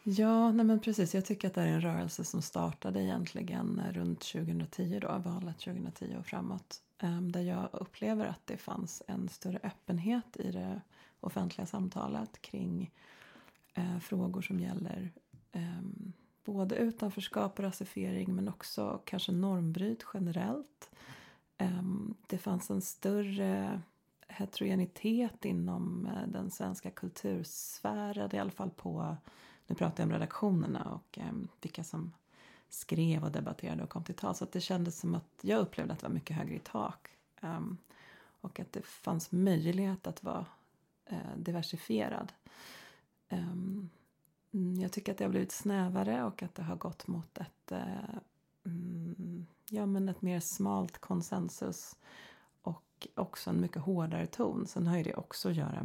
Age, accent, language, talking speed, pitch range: 30-49, native, Swedish, 145 wpm, 170-200 Hz